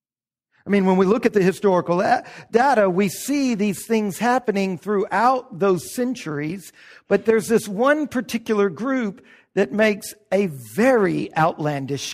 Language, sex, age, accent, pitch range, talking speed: English, male, 50-69, American, 175-230 Hz, 140 wpm